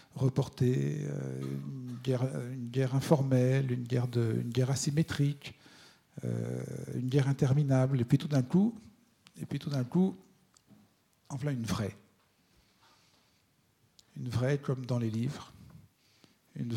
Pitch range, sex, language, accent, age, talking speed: 120-140 Hz, male, French, French, 50-69, 135 wpm